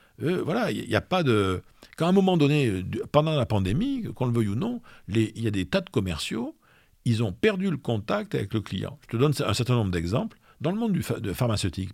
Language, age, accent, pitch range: French, 50-69, French, 105-145 Hz